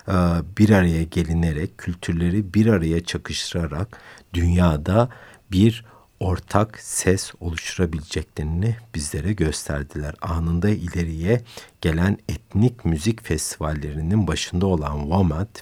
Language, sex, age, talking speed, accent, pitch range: Turkish, male, 60-79, 90 wpm, native, 80-105 Hz